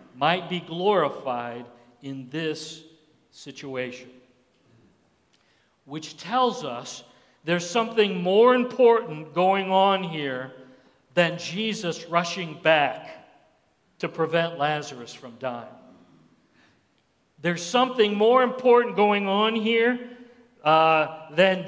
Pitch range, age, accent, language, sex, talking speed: 155-215 Hz, 50-69, American, English, male, 95 wpm